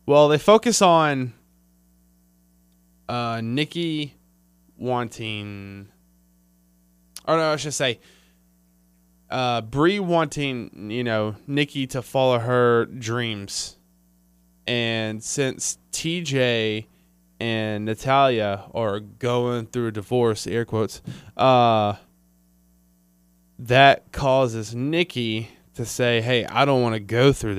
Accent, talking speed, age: American, 100 wpm, 20-39